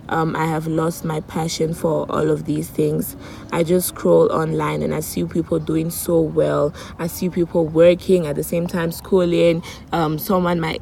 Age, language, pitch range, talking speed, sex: 20-39, English, 155-175 Hz, 190 wpm, female